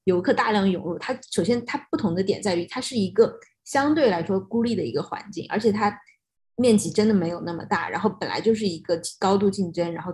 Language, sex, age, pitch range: Chinese, female, 20-39, 180-215 Hz